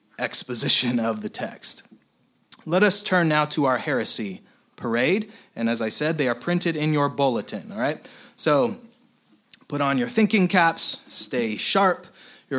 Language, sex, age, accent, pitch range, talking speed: English, male, 30-49, American, 145-185 Hz, 155 wpm